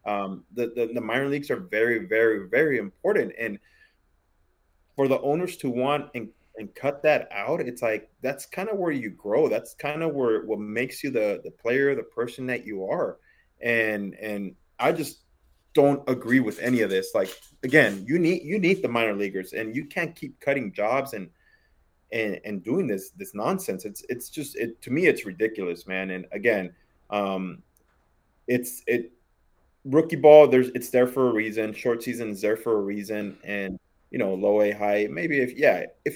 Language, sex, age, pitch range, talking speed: English, male, 30-49, 100-140 Hz, 195 wpm